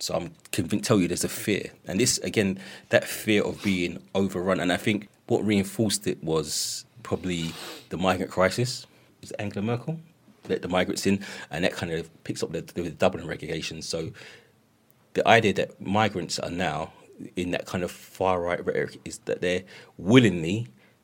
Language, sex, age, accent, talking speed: English, male, 30-49, British, 180 wpm